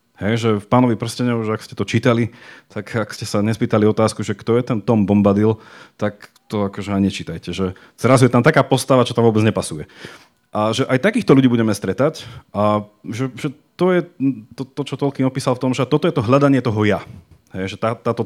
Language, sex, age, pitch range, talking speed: Slovak, male, 30-49, 105-135 Hz, 220 wpm